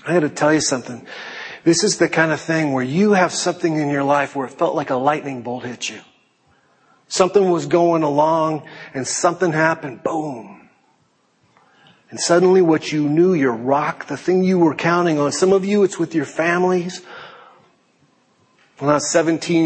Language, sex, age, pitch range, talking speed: English, male, 40-59, 135-165 Hz, 185 wpm